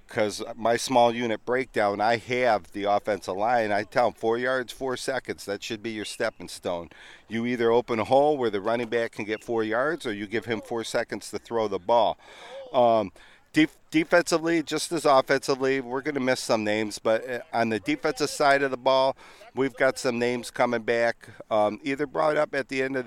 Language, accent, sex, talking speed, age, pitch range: English, American, male, 205 wpm, 40-59, 110-130 Hz